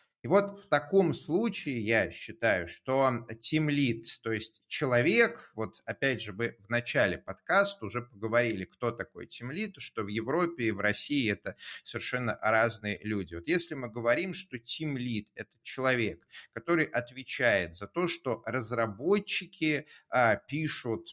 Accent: native